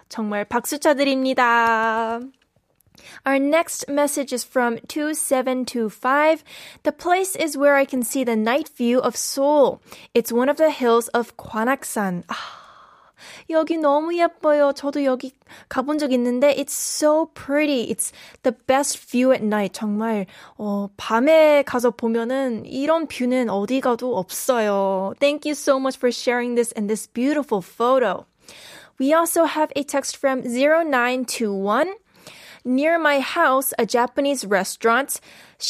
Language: Korean